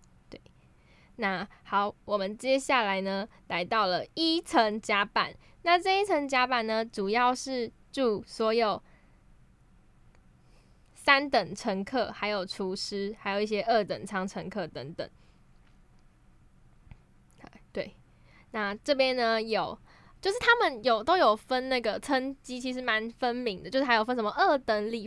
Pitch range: 205-260 Hz